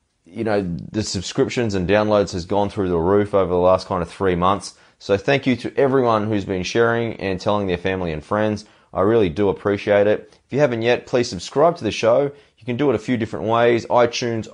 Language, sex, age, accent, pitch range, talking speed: English, male, 20-39, Australian, 90-115 Hz, 225 wpm